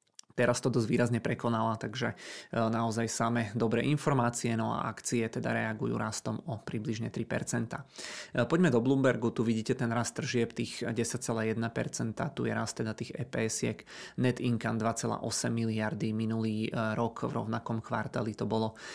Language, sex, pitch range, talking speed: Czech, male, 110-120 Hz, 145 wpm